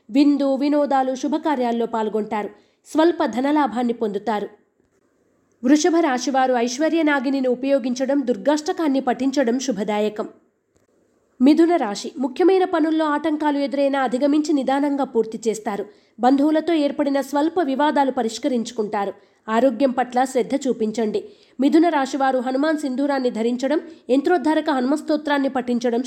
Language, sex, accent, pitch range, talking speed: Telugu, female, native, 245-300 Hz, 95 wpm